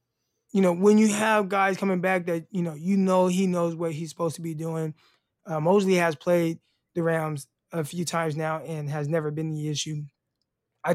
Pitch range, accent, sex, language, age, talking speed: 155-185 Hz, American, male, English, 20-39, 210 wpm